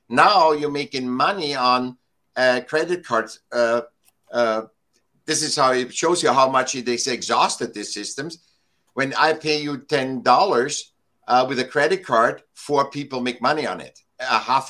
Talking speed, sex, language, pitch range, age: 165 wpm, male, English, 115-145 Hz, 60-79